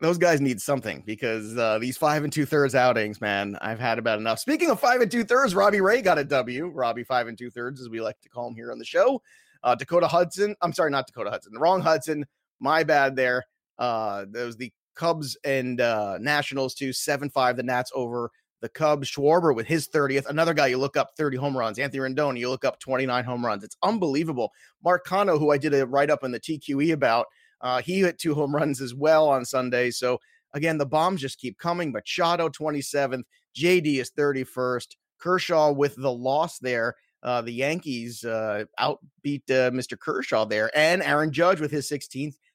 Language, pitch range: English, 125-150 Hz